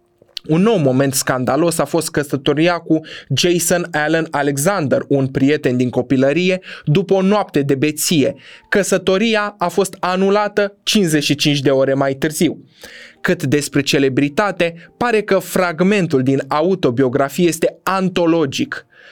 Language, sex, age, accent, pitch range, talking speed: Romanian, male, 20-39, native, 145-200 Hz, 120 wpm